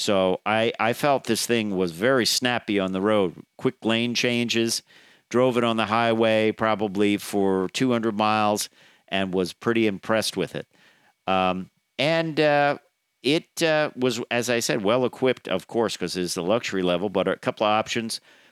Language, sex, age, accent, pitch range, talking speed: English, male, 50-69, American, 105-130 Hz, 170 wpm